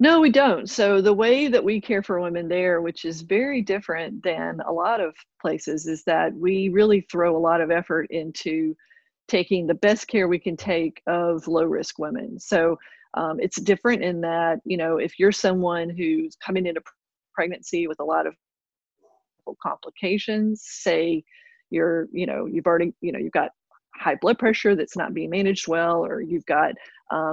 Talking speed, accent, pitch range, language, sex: 180 wpm, American, 170-215 Hz, English, female